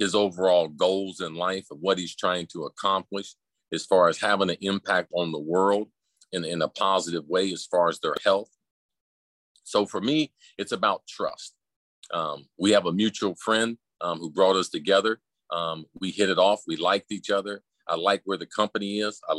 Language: English